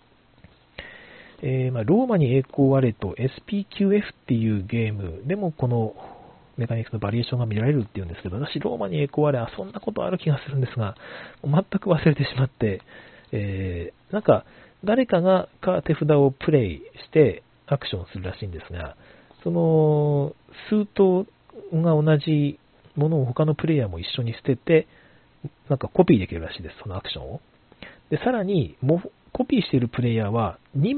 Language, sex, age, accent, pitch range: Japanese, male, 40-59, native, 115-160 Hz